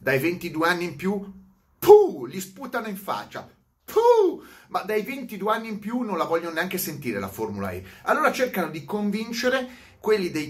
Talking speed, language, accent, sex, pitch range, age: 175 wpm, Italian, native, male, 145-230 Hz, 30-49